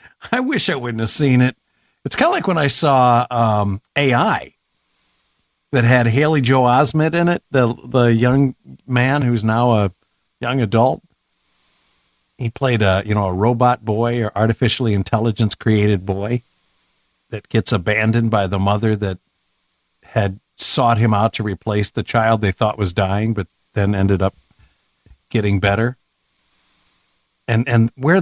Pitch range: 100-130 Hz